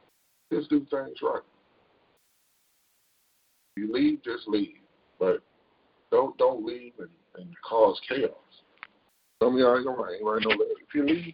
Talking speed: 130 wpm